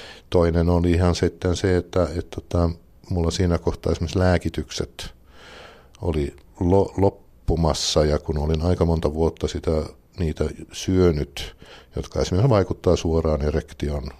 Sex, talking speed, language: male, 125 wpm, Finnish